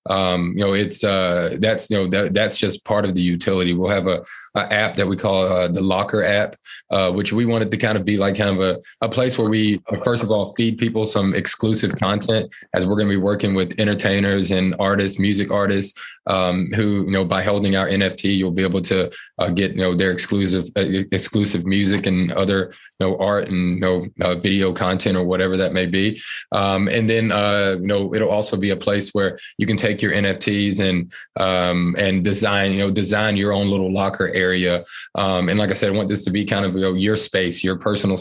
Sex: male